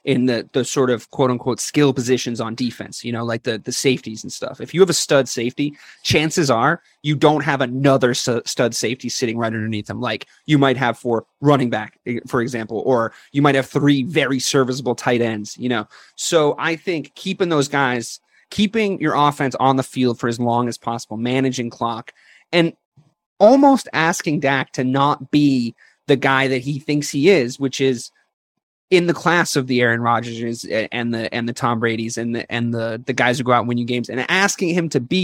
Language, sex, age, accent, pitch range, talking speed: English, male, 30-49, American, 120-160 Hz, 210 wpm